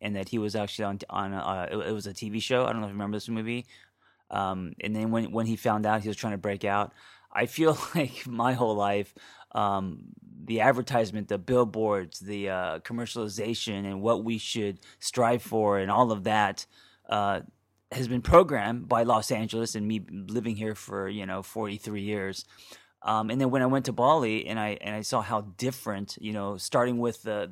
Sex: male